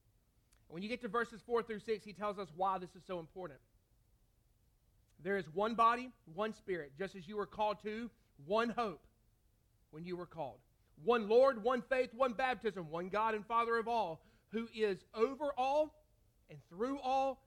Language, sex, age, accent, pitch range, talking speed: English, male, 40-59, American, 165-230 Hz, 180 wpm